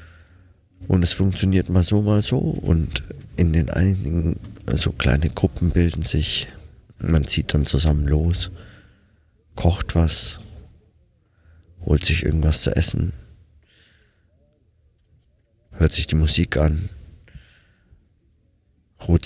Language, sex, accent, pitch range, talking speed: German, male, German, 80-95 Hz, 105 wpm